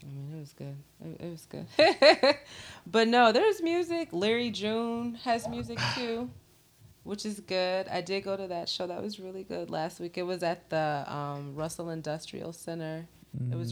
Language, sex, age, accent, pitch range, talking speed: English, female, 20-39, American, 145-165 Hz, 190 wpm